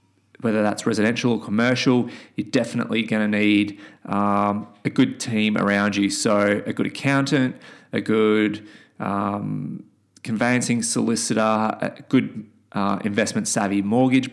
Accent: Australian